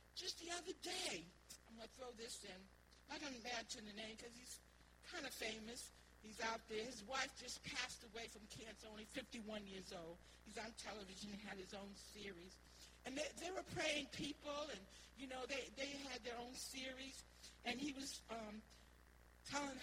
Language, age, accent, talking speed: English, 50-69, American, 190 wpm